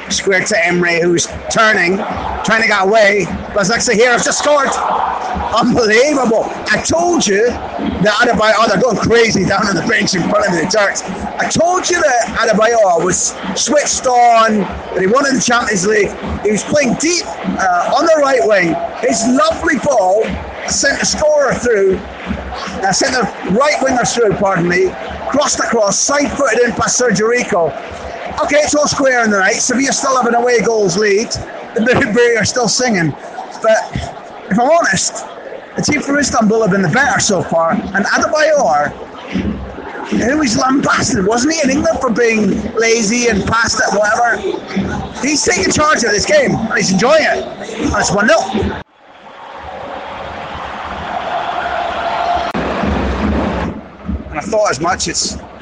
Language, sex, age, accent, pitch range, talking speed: English, male, 30-49, British, 215-295 Hz, 160 wpm